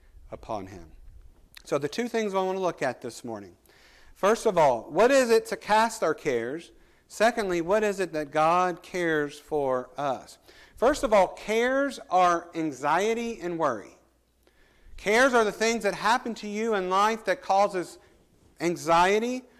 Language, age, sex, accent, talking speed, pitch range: English, 50-69, male, American, 160 wpm, 170-230 Hz